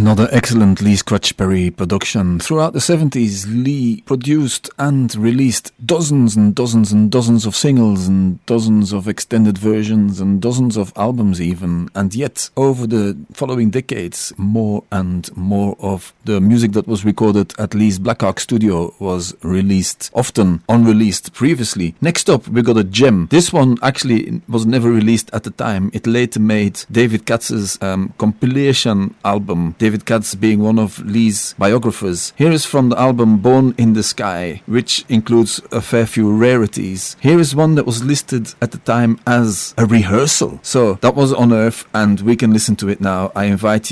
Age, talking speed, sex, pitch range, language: 40-59, 170 wpm, male, 100-120 Hz, English